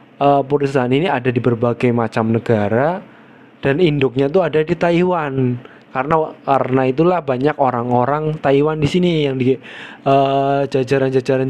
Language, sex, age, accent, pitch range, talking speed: Indonesian, male, 20-39, native, 130-155 Hz, 135 wpm